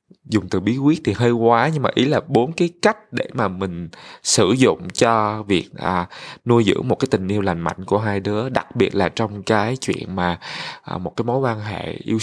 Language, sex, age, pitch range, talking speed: Vietnamese, male, 20-39, 95-130 Hz, 230 wpm